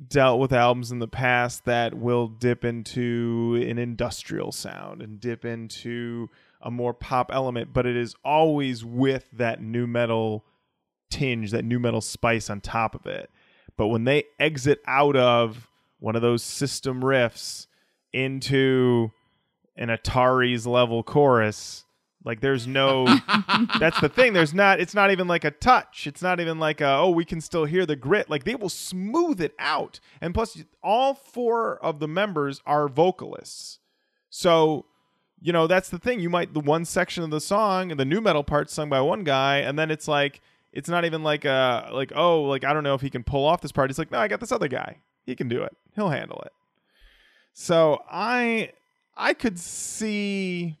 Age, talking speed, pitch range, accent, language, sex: 20-39, 190 wpm, 120-170 Hz, American, English, male